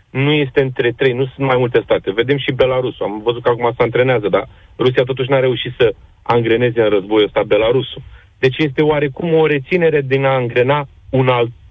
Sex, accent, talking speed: male, native, 200 wpm